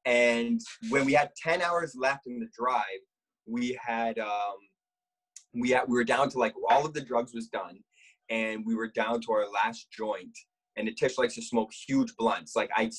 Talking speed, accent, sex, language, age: 210 wpm, American, male, English, 20-39